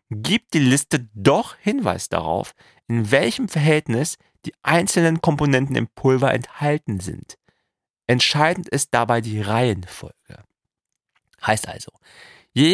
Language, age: German, 40-59